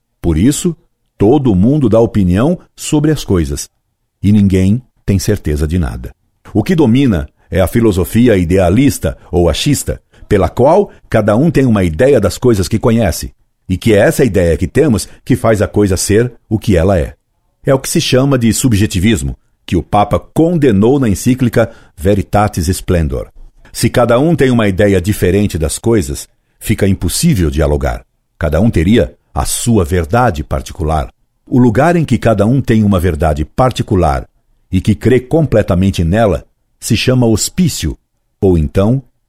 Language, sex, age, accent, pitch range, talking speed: Portuguese, male, 60-79, Brazilian, 90-120 Hz, 160 wpm